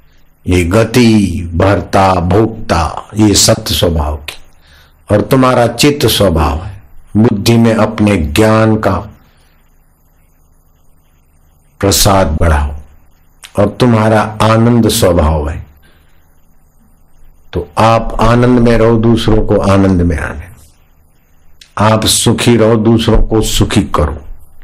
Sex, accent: male, native